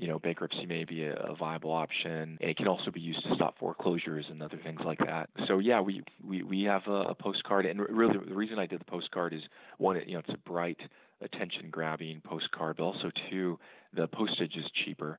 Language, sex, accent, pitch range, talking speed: English, male, American, 80-95 Hz, 215 wpm